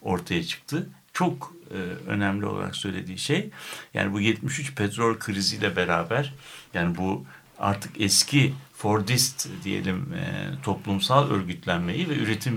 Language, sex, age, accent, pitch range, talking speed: Turkish, male, 60-79, native, 100-130 Hz, 120 wpm